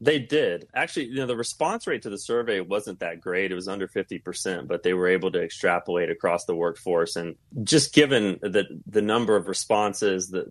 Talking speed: 210 wpm